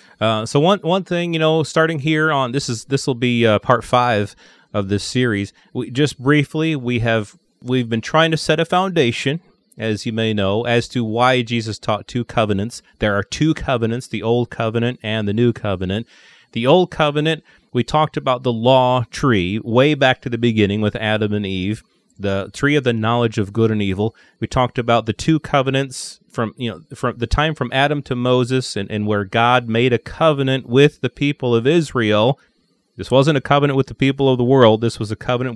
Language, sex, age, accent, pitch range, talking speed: English, male, 30-49, American, 110-135 Hz, 210 wpm